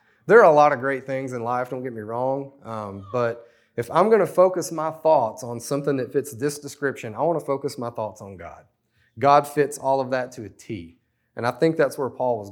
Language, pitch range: English, 115-150 Hz